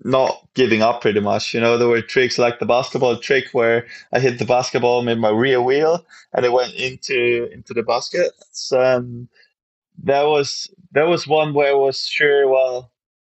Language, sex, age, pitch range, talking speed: English, male, 20-39, 115-140 Hz, 190 wpm